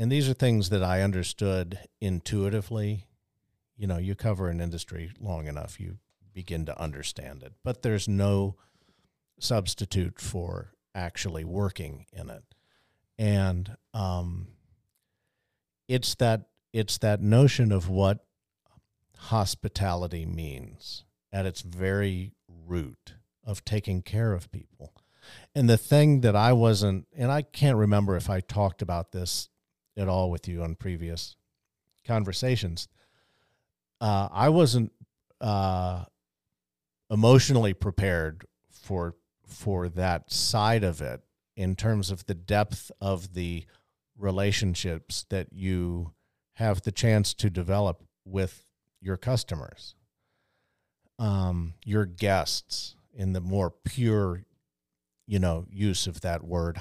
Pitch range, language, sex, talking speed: 90-105 Hz, English, male, 120 wpm